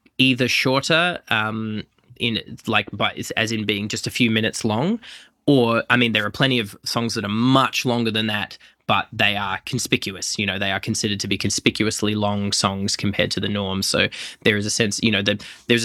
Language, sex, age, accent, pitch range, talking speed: English, male, 20-39, Australian, 105-120 Hz, 210 wpm